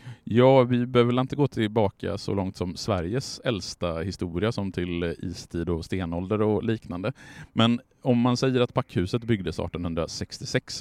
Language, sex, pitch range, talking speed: Swedish, male, 85-120 Hz, 155 wpm